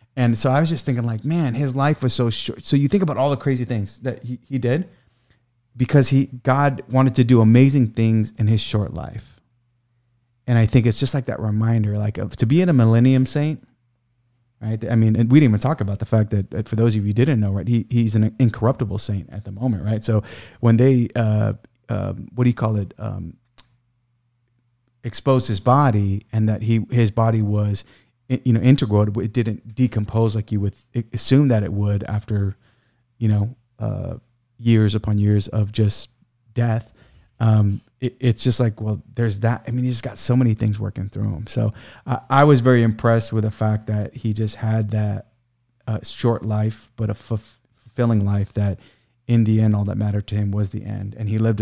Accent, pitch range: American, 110-125 Hz